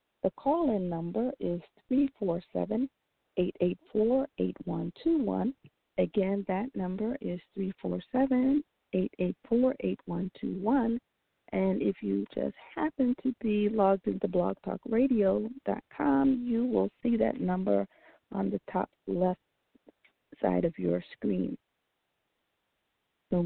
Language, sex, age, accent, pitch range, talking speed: English, female, 40-59, American, 185-260 Hz, 85 wpm